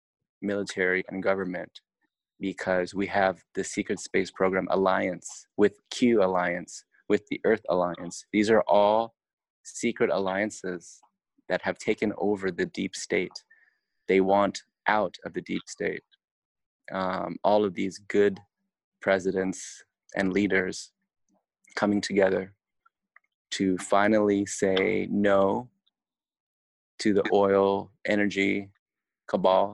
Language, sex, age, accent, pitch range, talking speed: English, male, 20-39, American, 90-100 Hz, 115 wpm